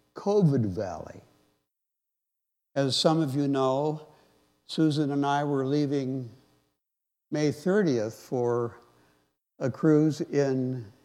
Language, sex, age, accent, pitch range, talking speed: English, male, 60-79, American, 105-145 Hz, 100 wpm